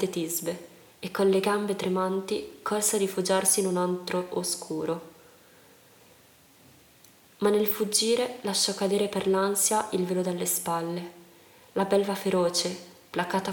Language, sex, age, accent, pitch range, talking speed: Italian, female, 20-39, native, 180-210 Hz, 125 wpm